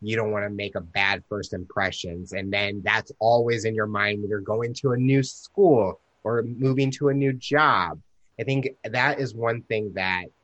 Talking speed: 205 wpm